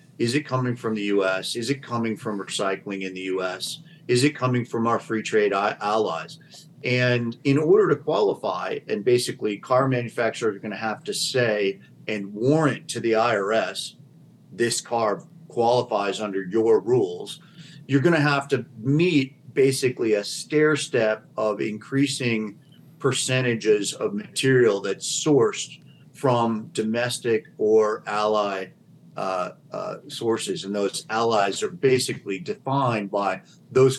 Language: English